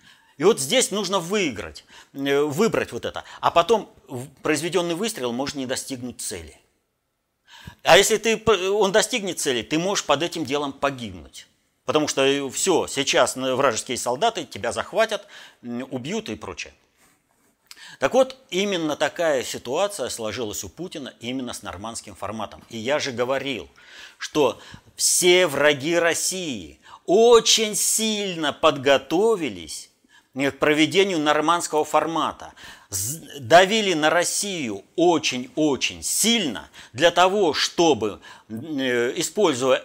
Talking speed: 110 wpm